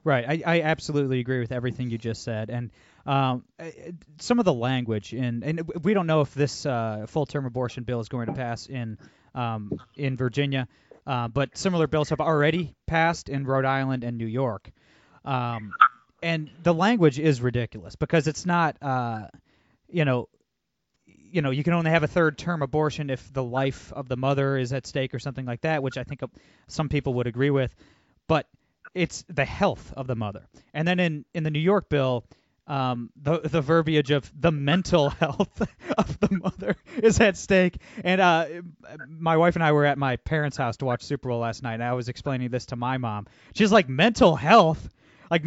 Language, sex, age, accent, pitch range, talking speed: English, male, 20-39, American, 130-175 Hz, 200 wpm